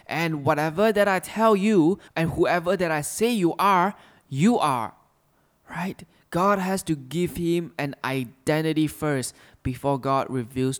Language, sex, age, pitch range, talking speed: English, male, 20-39, 135-185 Hz, 150 wpm